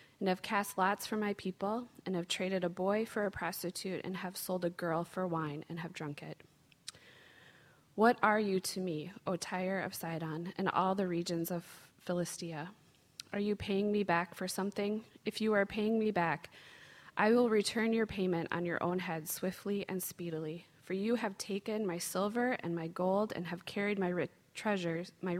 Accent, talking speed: American, 190 wpm